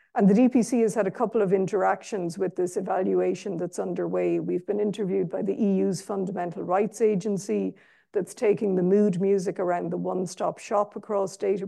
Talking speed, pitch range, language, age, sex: 175 wpm, 185-210 Hz, English, 50-69, female